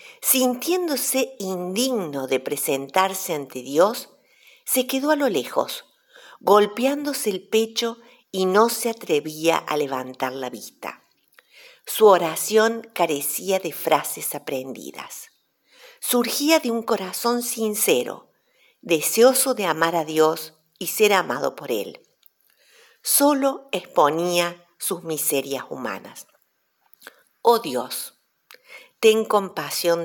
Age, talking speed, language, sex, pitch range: 50-69, 105 wpm, Spanish, female, 160-245 Hz